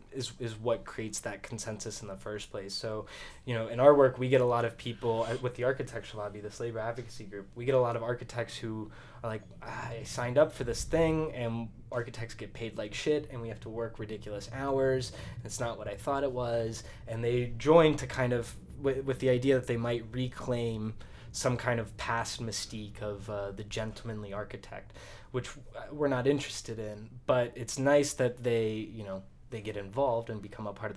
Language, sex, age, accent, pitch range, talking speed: English, male, 20-39, American, 105-125 Hz, 210 wpm